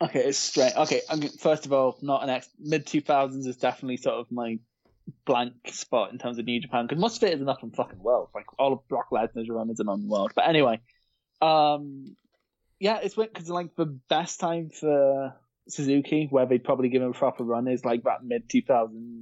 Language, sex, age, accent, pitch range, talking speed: English, male, 20-39, British, 115-150 Hz, 220 wpm